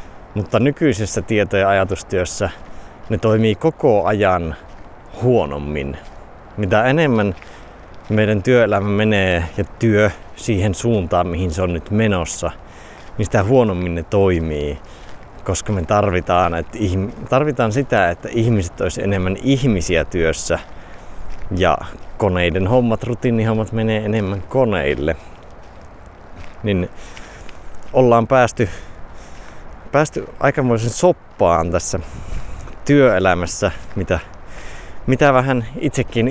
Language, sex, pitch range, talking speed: Finnish, male, 85-110 Hz, 100 wpm